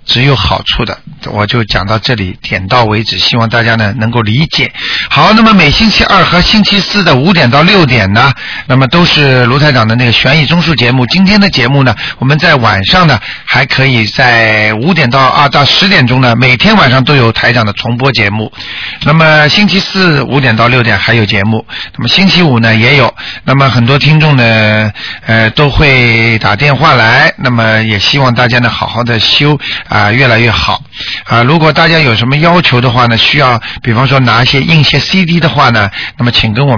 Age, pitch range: 50-69, 110-150 Hz